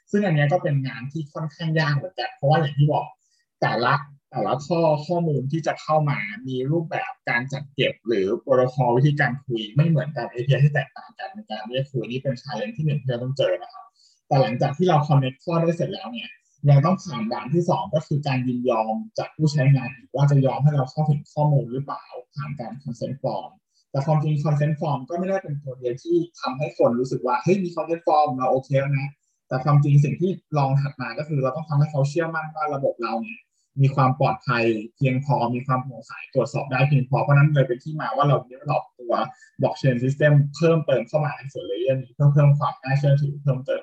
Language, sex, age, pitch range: Thai, male, 20-39, 135-160 Hz